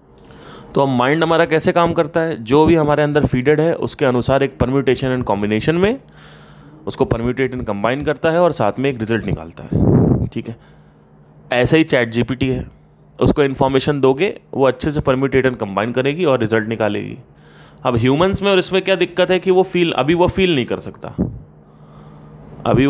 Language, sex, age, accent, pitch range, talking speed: Hindi, male, 20-39, native, 110-150 Hz, 190 wpm